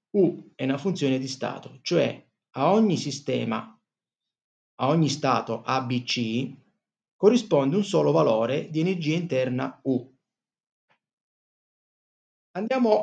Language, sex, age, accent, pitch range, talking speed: Italian, male, 30-49, native, 120-145 Hz, 105 wpm